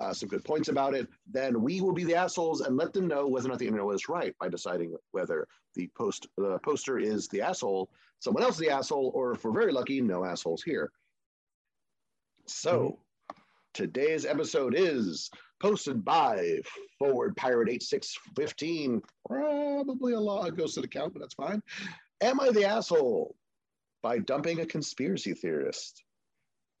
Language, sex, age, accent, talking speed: English, male, 40-59, American, 165 wpm